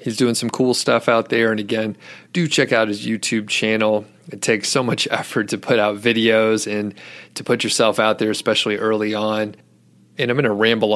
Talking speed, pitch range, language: 210 wpm, 105-115 Hz, English